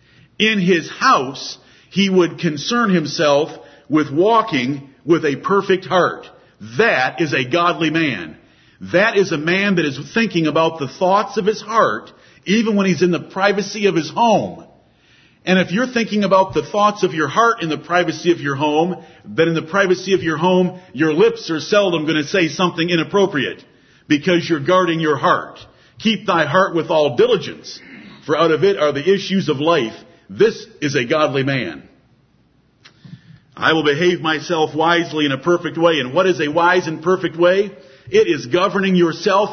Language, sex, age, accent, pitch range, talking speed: English, male, 50-69, American, 155-190 Hz, 180 wpm